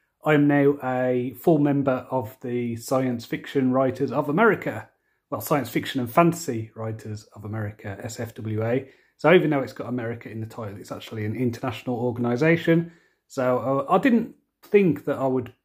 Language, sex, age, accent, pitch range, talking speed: English, male, 30-49, British, 120-150 Hz, 170 wpm